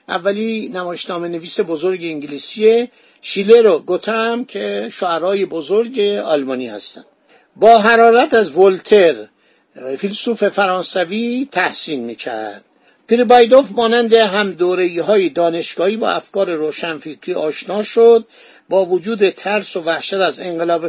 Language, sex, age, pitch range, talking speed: Persian, male, 60-79, 175-230 Hz, 110 wpm